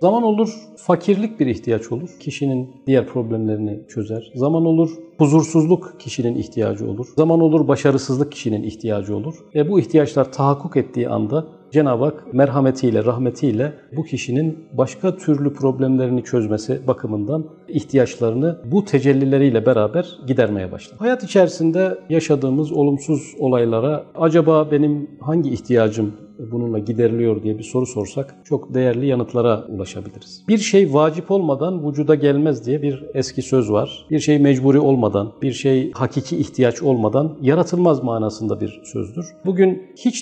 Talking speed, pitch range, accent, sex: 135 wpm, 120-160 Hz, native, male